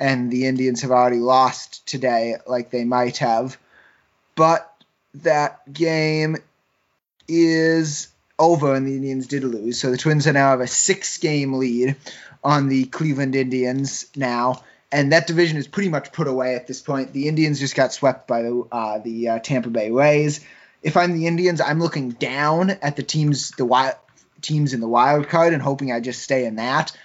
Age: 20-39